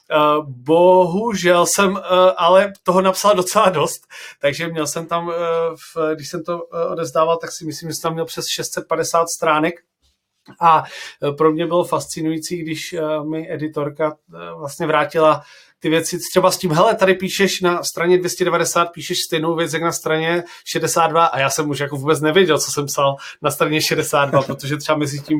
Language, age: Czech, 30-49